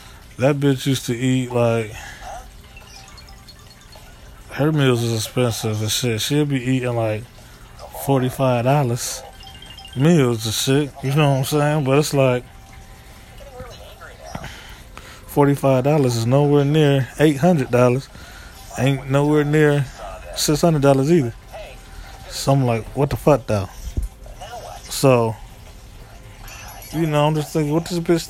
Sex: male